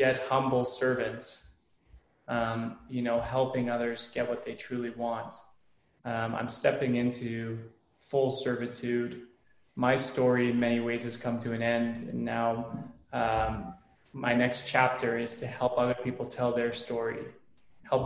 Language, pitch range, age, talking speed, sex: English, 115-130 Hz, 20-39, 145 wpm, male